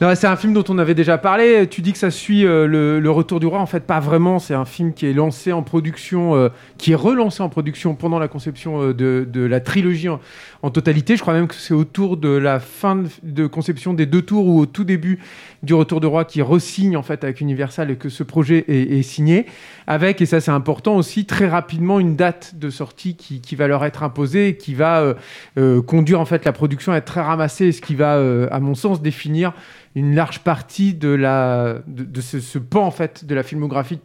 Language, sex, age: French, male, 40-59